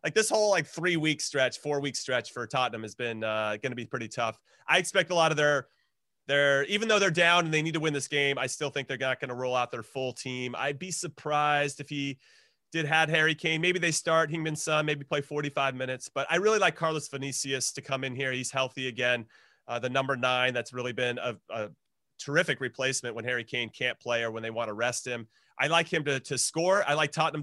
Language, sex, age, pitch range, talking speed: English, male, 30-49, 125-155 Hz, 245 wpm